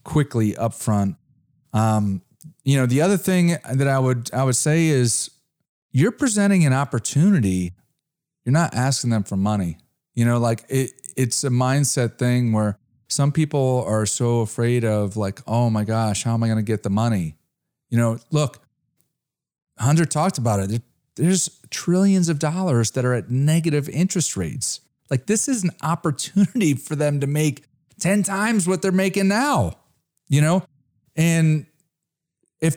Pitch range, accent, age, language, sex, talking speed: 115-160 Hz, American, 40-59, English, male, 165 wpm